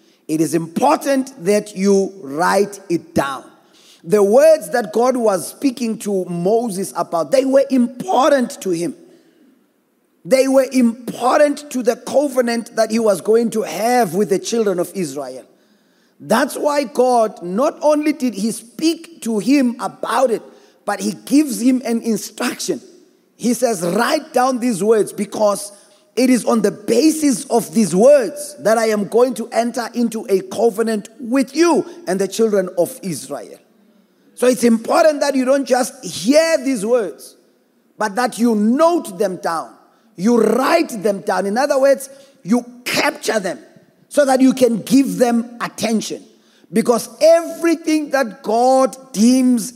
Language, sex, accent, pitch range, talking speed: English, male, South African, 210-270 Hz, 150 wpm